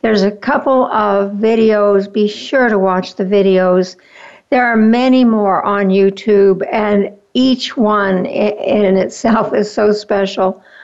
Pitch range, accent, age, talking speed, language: 190-230 Hz, American, 60-79, 140 wpm, English